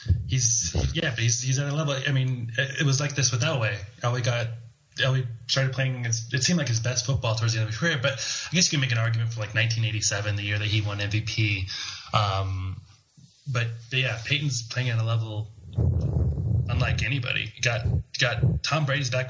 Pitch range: 110-130 Hz